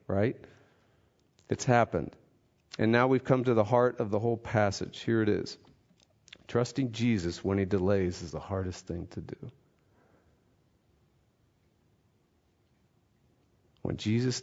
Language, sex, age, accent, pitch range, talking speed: English, male, 40-59, American, 110-135 Hz, 125 wpm